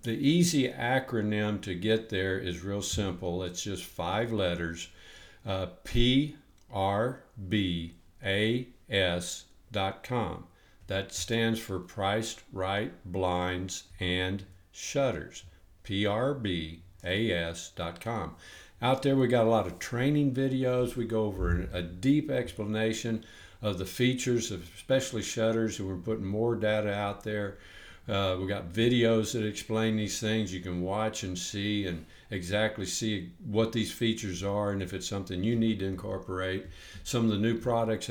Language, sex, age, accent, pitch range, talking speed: English, male, 60-79, American, 95-110 Hz, 140 wpm